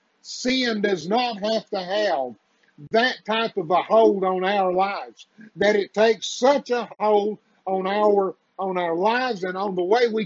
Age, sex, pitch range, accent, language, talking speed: 50-69, male, 185-235 Hz, American, English, 170 wpm